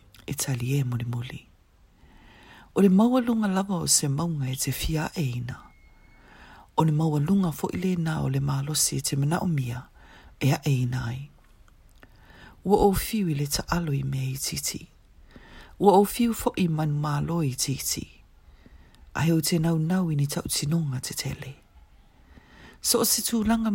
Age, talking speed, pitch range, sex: 40-59, 125 wpm, 120-185 Hz, female